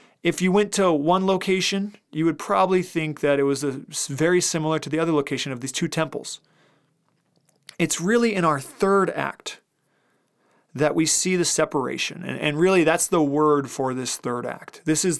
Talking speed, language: 180 wpm, English